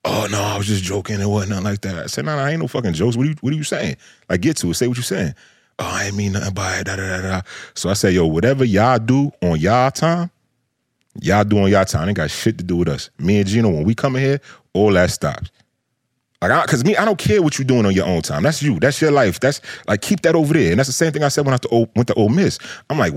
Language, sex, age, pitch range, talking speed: English, male, 30-49, 90-130 Hz, 310 wpm